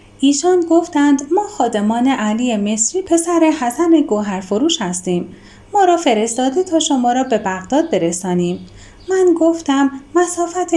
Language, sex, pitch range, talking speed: Persian, female, 210-305 Hz, 130 wpm